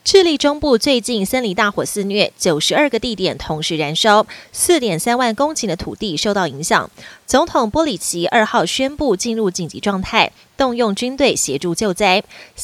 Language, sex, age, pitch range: Chinese, female, 20-39, 195-260 Hz